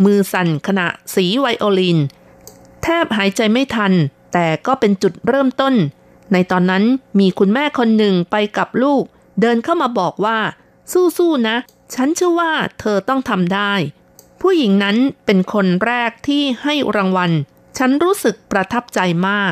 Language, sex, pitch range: Thai, female, 190-250 Hz